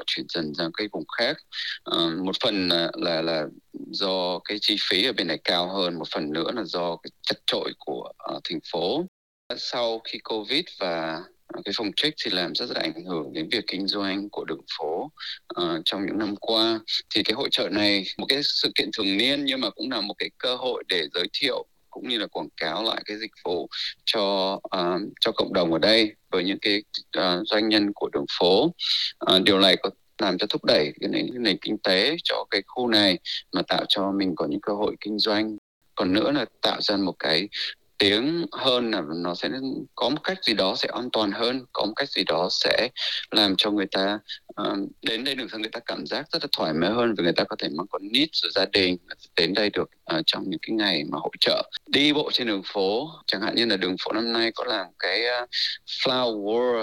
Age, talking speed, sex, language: 20-39, 225 wpm, male, Vietnamese